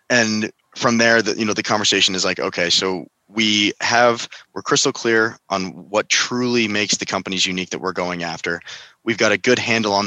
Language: English